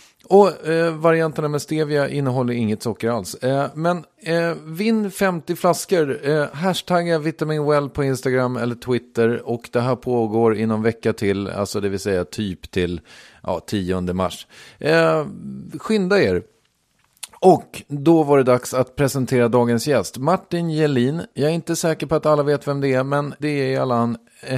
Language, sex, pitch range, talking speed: English, male, 115-155 Hz, 170 wpm